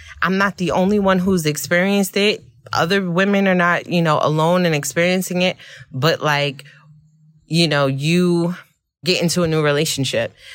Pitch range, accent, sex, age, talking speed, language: 135-165 Hz, American, female, 20-39, 160 wpm, English